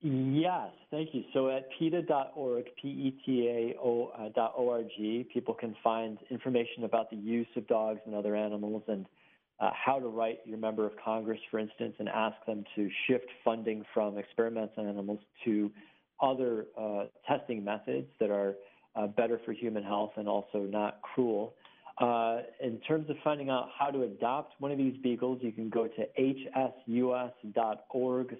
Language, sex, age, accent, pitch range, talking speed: English, male, 40-59, American, 110-125 Hz, 155 wpm